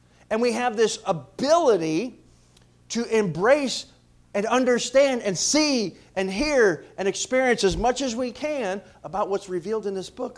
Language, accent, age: English, American, 40-59